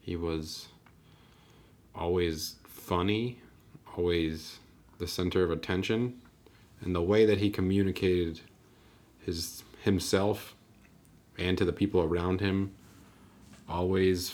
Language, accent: English, American